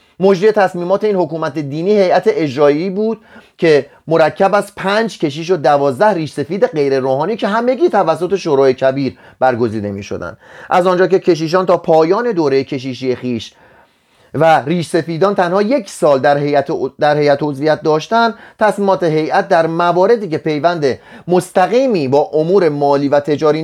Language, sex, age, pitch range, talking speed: Persian, male, 30-49, 145-195 Hz, 150 wpm